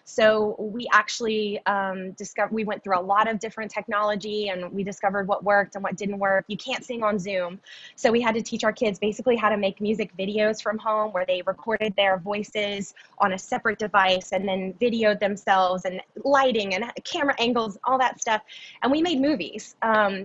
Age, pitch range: 20-39, 195-225 Hz